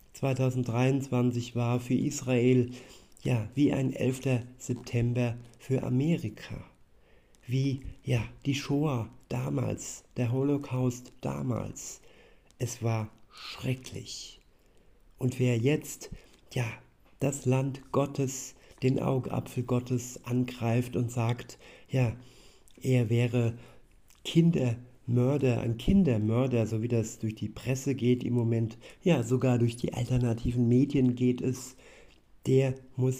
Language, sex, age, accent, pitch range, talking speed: German, male, 50-69, German, 120-130 Hz, 110 wpm